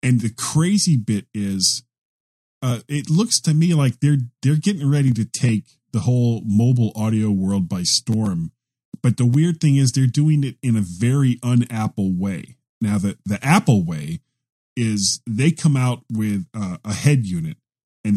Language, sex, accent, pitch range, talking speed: English, male, American, 105-140 Hz, 170 wpm